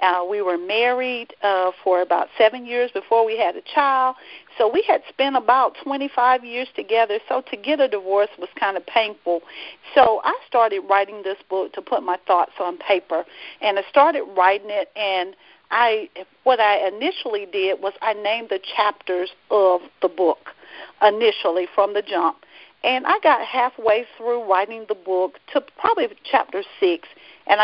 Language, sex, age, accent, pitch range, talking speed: English, female, 50-69, American, 195-260 Hz, 170 wpm